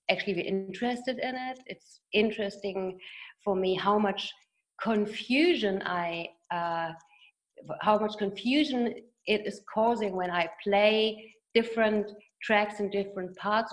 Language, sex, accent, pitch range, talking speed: English, female, German, 185-230 Hz, 120 wpm